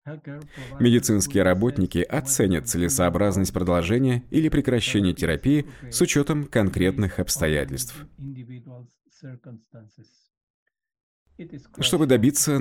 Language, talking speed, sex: English, 65 wpm, male